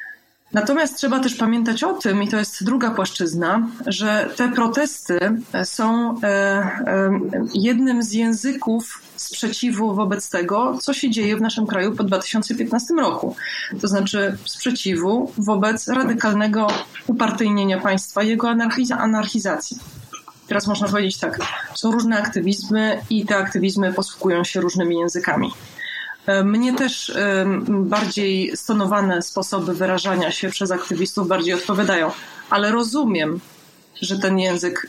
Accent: native